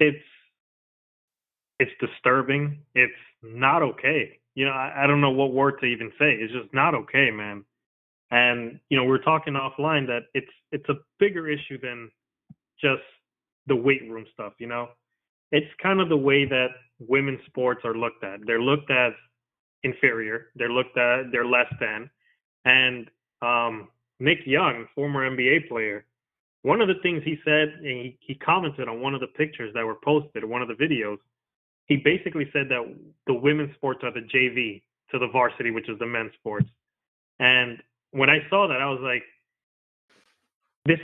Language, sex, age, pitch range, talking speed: English, male, 20-39, 120-150 Hz, 175 wpm